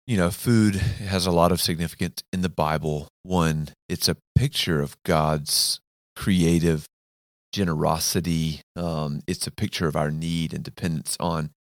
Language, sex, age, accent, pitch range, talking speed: English, male, 30-49, American, 80-90 Hz, 150 wpm